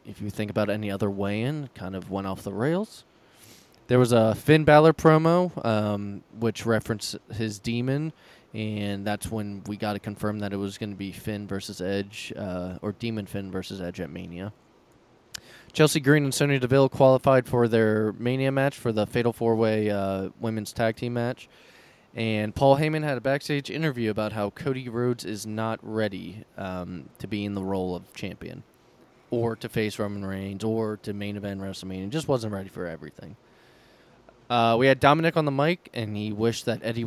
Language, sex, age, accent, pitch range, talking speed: English, male, 20-39, American, 100-125 Hz, 190 wpm